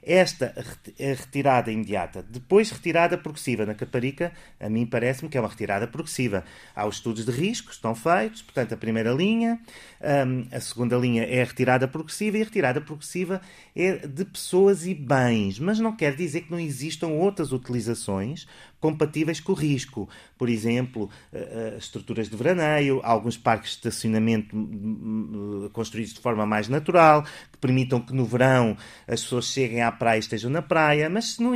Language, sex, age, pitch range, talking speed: Portuguese, male, 30-49, 120-165 Hz, 165 wpm